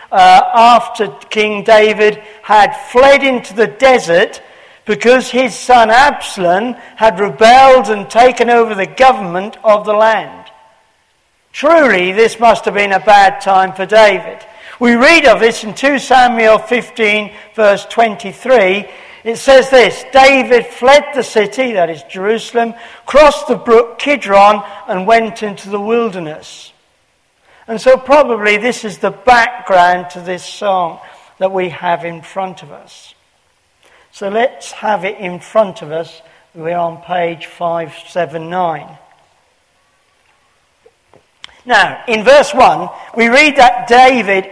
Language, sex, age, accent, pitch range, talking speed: English, male, 50-69, British, 195-245 Hz, 135 wpm